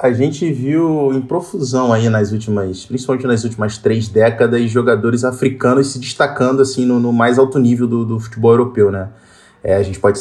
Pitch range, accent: 115-145 Hz, Brazilian